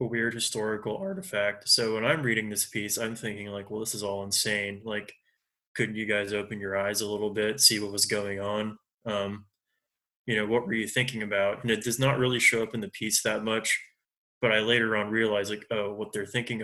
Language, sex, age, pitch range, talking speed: English, male, 20-39, 100-110 Hz, 225 wpm